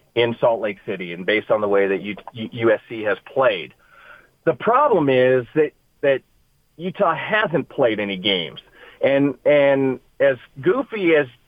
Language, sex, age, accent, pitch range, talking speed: English, male, 40-59, American, 115-150 Hz, 155 wpm